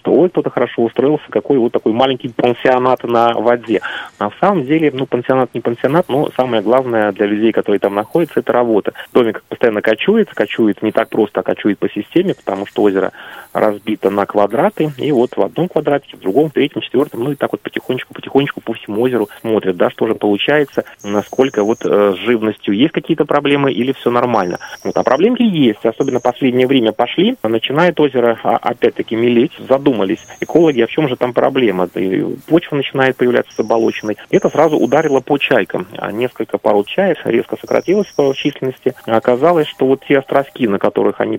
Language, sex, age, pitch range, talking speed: Russian, male, 30-49, 115-145 Hz, 185 wpm